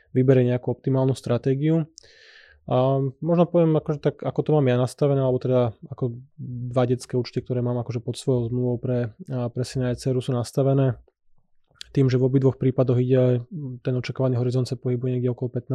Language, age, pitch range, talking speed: Slovak, 20-39, 125-135 Hz, 175 wpm